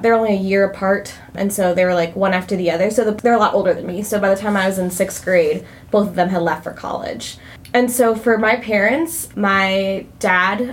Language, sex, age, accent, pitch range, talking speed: English, female, 20-39, American, 180-210 Hz, 245 wpm